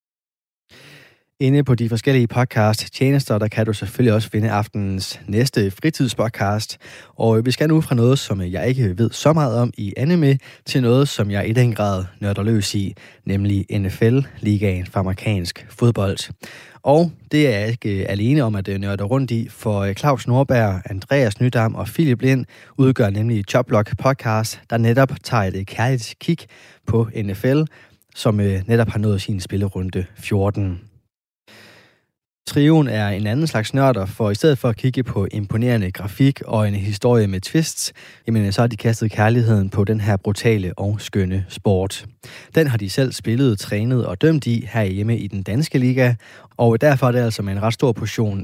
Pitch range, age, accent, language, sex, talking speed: 100-125 Hz, 20-39, native, Danish, male, 170 wpm